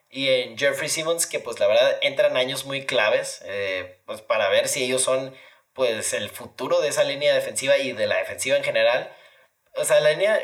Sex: male